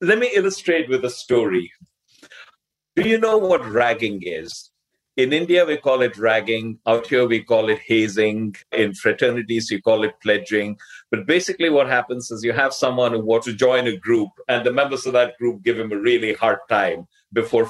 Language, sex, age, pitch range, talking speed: English, male, 50-69, 110-155 Hz, 195 wpm